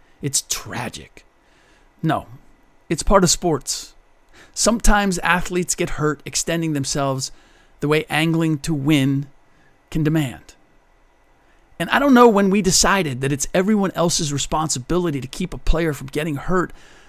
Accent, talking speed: American, 135 wpm